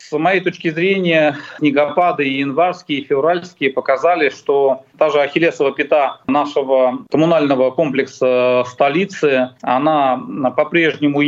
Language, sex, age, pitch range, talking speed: Russian, male, 40-59, 135-165 Hz, 110 wpm